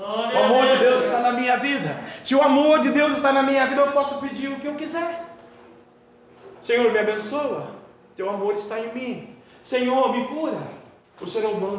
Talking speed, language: 205 wpm, Portuguese